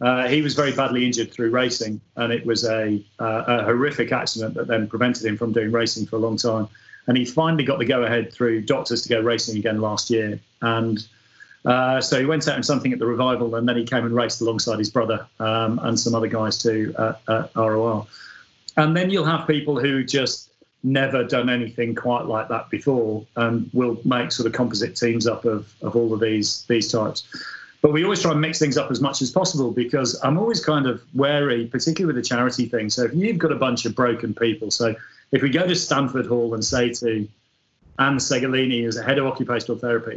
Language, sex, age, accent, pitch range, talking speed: English, male, 40-59, British, 115-135 Hz, 225 wpm